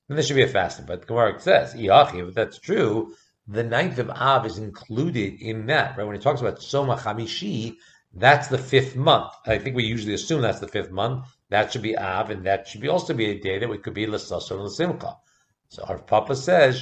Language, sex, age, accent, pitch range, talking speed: English, male, 50-69, American, 110-135 Hz, 230 wpm